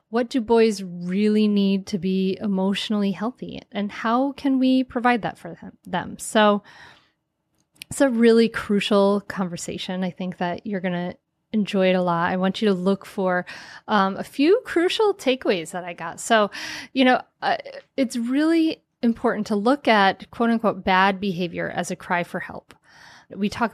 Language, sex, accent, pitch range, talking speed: English, female, American, 185-250 Hz, 170 wpm